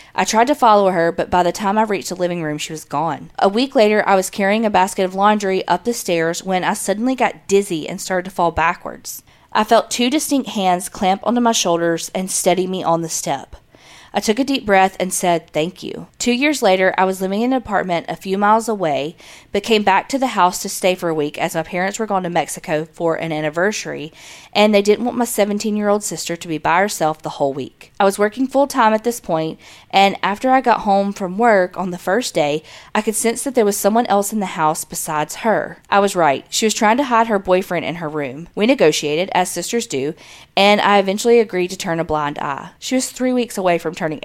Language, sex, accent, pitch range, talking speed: English, female, American, 170-215 Hz, 245 wpm